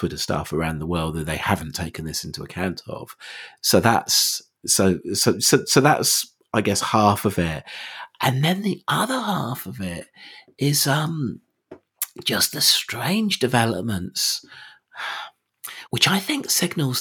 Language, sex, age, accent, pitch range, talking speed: English, male, 40-59, British, 90-115 Hz, 150 wpm